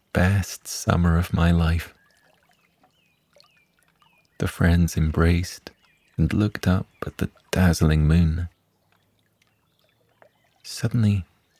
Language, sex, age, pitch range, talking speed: English, male, 30-49, 80-100 Hz, 85 wpm